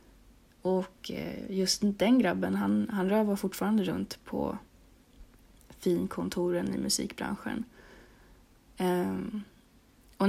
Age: 30-49